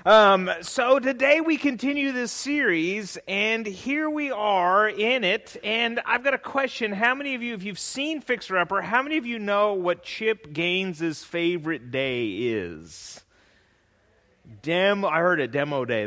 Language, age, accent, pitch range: English, 30-49, American, 165-245 Hz